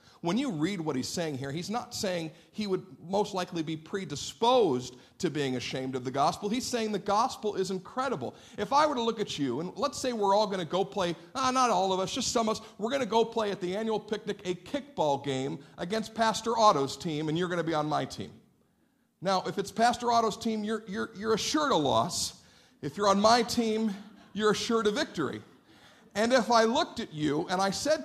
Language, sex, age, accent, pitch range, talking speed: English, male, 50-69, American, 175-245 Hz, 230 wpm